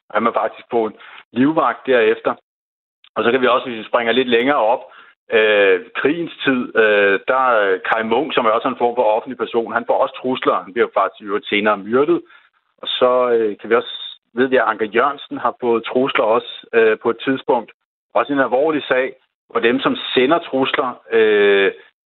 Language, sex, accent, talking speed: Danish, male, native, 195 wpm